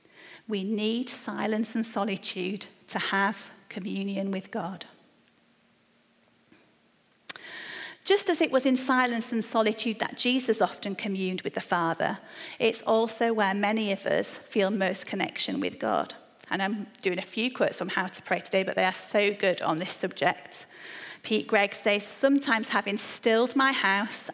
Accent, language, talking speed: British, English, 155 wpm